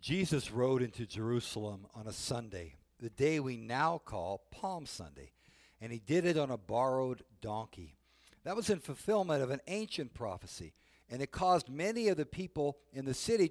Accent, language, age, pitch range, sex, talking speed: American, English, 60-79, 110-185 Hz, male, 180 wpm